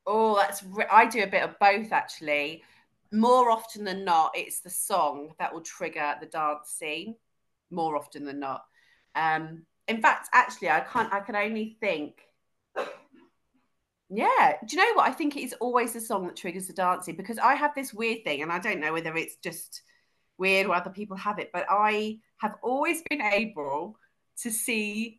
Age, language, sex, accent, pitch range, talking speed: 40-59, English, female, British, 160-230 Hz, 190 wpm